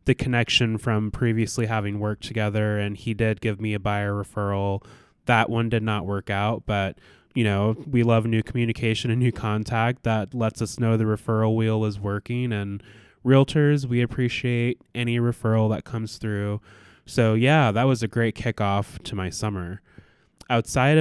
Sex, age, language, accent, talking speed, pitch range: male, 20-39, English, American, 170 wpm, 100-115 Hz